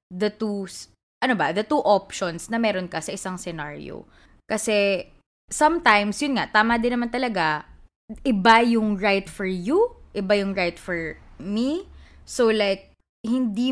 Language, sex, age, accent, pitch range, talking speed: English, female, 20-39, Filipino, 195-260 Hz, 150 wpm